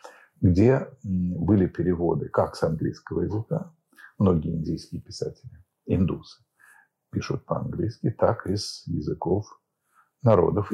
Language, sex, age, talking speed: Russian, male, 50-69, 100 wpm